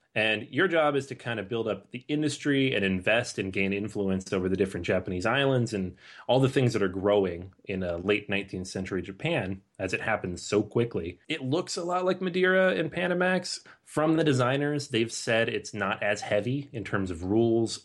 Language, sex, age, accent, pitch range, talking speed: English, male, 30-49, American, 100-135 Hz, 200 wpm